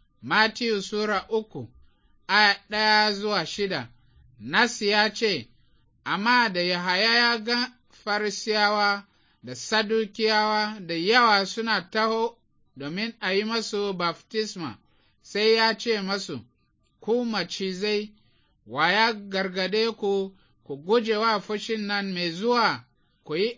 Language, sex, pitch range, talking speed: English, male, 185-225 Hz, 90 wpm